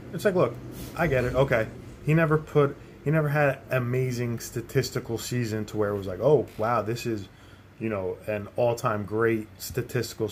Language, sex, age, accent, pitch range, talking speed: English, male, 20-39, American, 105-140 Hz, 185 wpm